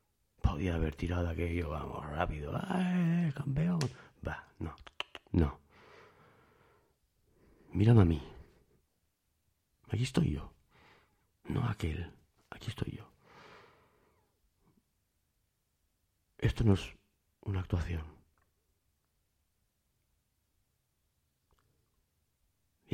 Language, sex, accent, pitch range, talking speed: Spanish, male, Spanish, 85-115 Hz, 75 wpm